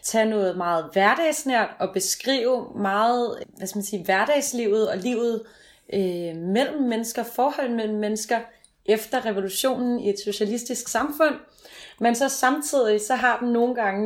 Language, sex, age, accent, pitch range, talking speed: Danish, female, 30-49, native, 195-245 Hz, 145 wpm